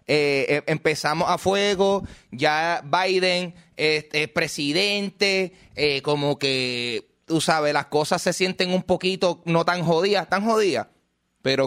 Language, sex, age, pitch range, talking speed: Spanish, male, 20-39, 135-190 Hz, 140 wpm